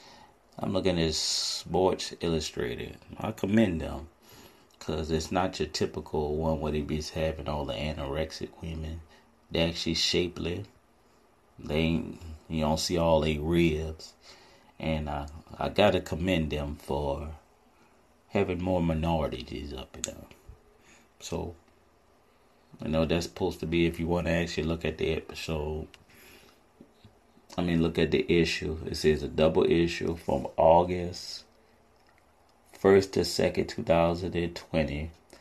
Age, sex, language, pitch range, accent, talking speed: 30-49, male, English, 75-85 Hz, American, 140 wpm